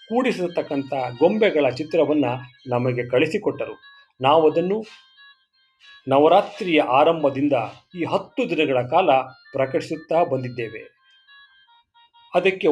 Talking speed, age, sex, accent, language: 75 wpm, 40-59, male, native, Kannada